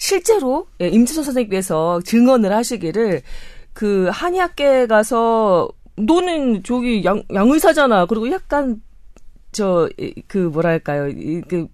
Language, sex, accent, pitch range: Korean, female, native, 175-260 Hz